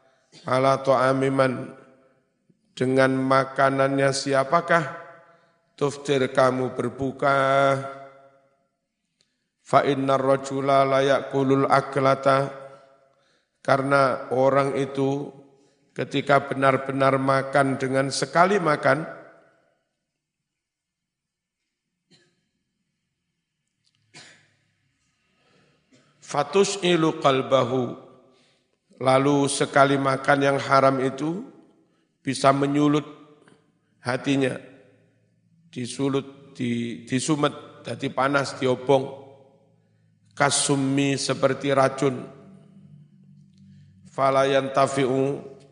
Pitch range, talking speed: 130-140 Hz, 55 wpm